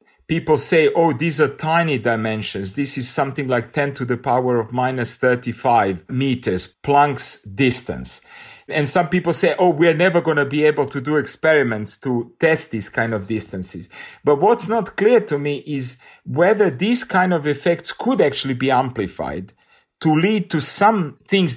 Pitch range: 125-170 Hz